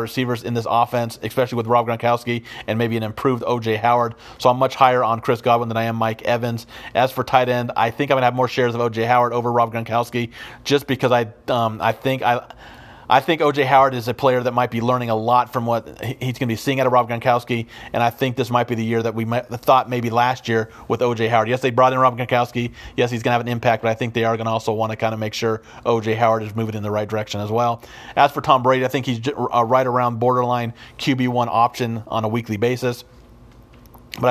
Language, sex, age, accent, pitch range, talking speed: English, male, 40-59, American, 110-125 Hz, 255 wpm